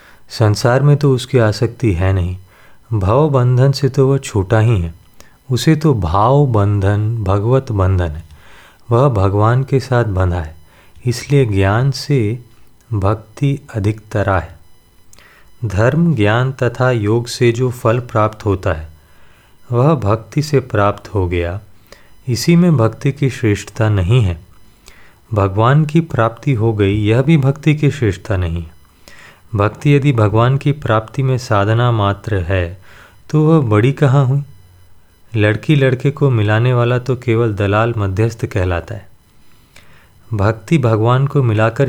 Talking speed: 140 wpm